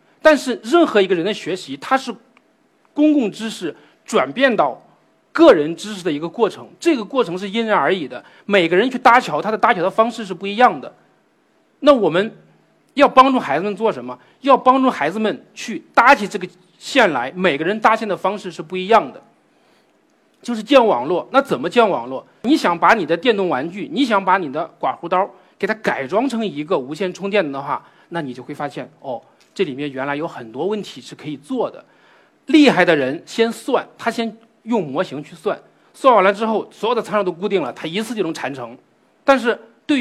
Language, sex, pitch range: Chinese, male, 185-255 Hz